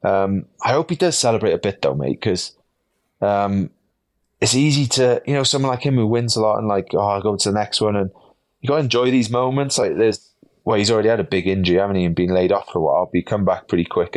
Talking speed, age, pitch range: 270 wpm, 20-39, 100-125 Hz